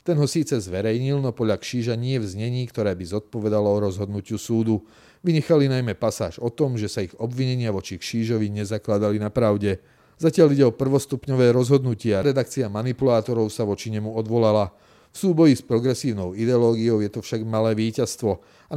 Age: 30-49